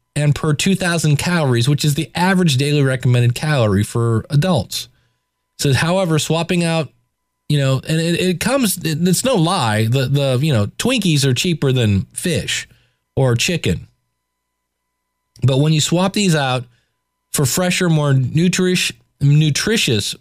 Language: English